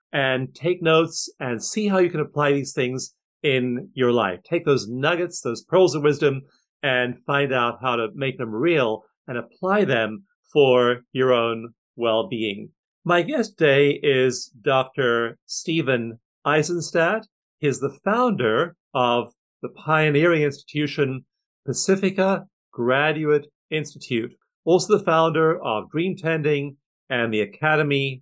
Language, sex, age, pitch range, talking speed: English, male, 50-69, 120-160 Hz, 130 wpm